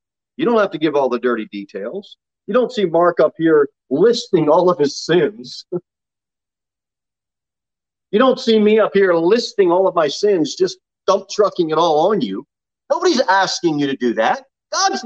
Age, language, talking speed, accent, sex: 40-59, English, 180 wpm, American, male